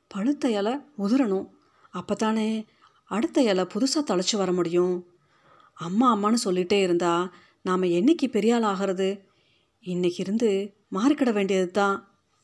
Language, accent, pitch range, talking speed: Tamil, native, 180-230 Hz, 110 wpm